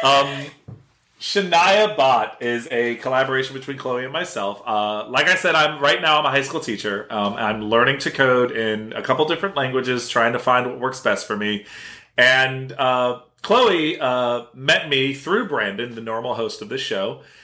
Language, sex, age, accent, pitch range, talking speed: English, male, 30-49, American, 120-155 Hz, 185 wpm